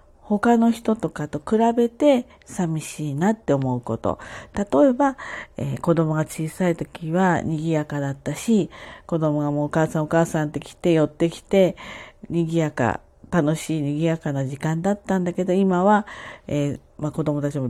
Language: Japanese